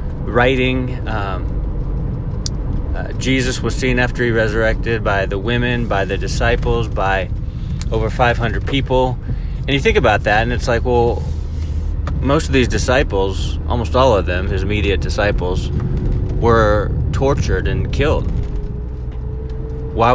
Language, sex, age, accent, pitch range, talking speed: English, male, 20-39, American, 80-120 Hz, 130 wpm